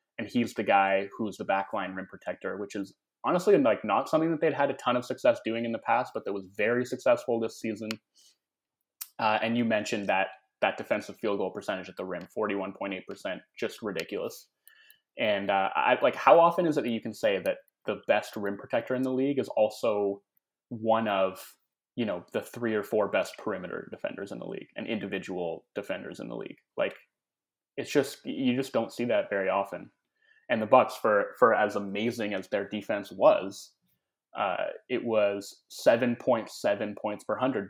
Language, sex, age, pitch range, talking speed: English, male, 20-39, 100-135 Hz, 195 wpm